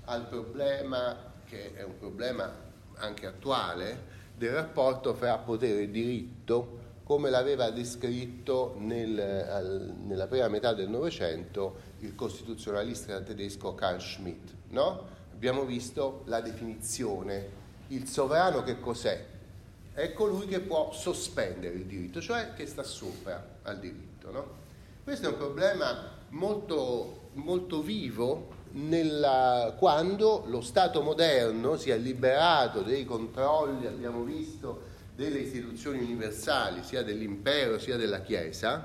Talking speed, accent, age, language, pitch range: 120 wpm, native, 30-49, Italian, 105-145 Hz